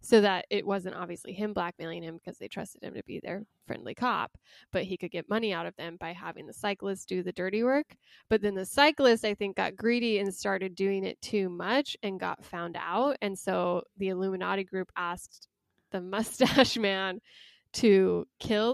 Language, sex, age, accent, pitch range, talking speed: English, female, 10-29, American, 190-240 Hz, 200 wpm